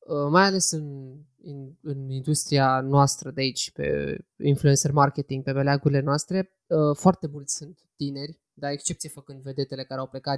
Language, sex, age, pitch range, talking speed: Romanian, male, 20-39, 135-155 Hz, 150 wpm